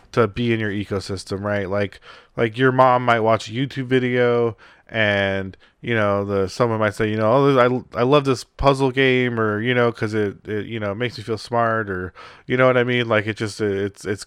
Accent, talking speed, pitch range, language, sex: American, 225 wpm, 100-125 Hz, English, male